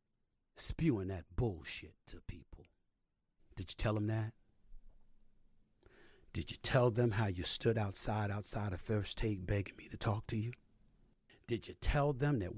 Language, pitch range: English, 105-135 Hz